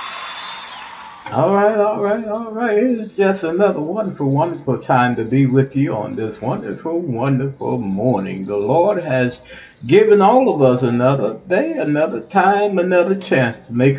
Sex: male